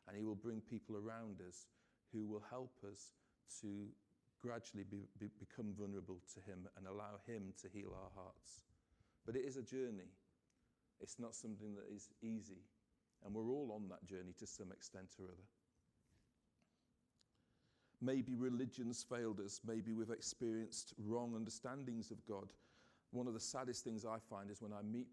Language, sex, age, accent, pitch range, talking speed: English, male, 40-59, British, 100-115 Hz, 160 wpm